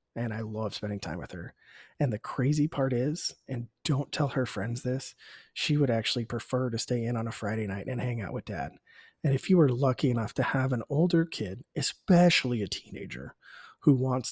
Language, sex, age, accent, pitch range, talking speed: English, male, 30-49, American, 115-145 Hz, 210 wpm